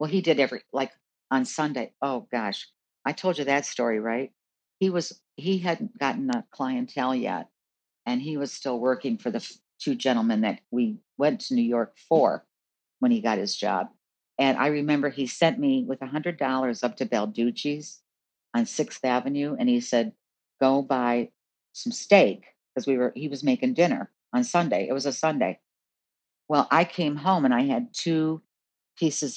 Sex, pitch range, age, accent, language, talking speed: female, 135-205 Hz, 50-69, American, English, 180 wpm